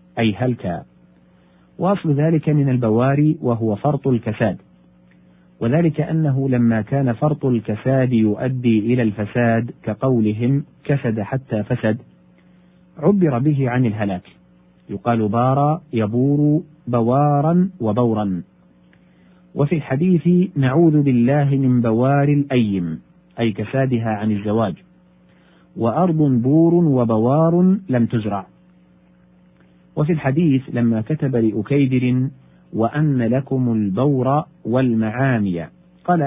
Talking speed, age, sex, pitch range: 95 wpm, 40-59, male, 105-145 Hz